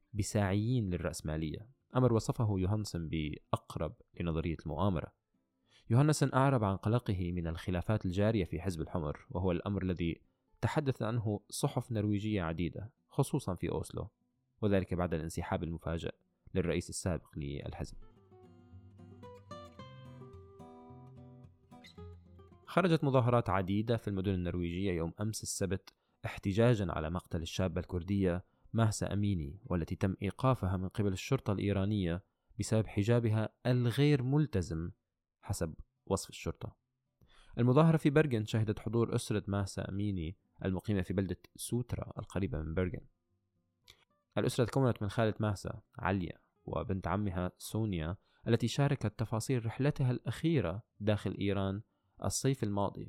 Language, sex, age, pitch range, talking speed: Arabic, male, 20-39, 90-115 Hz, 110 wpm